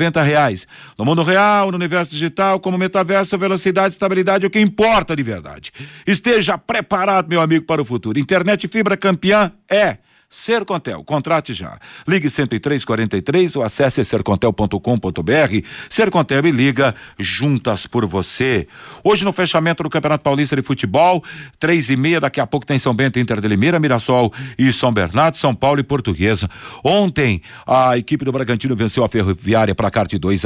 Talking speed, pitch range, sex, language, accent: 160 wpm, 120-165 Hz, male, Portuguese, Brazilian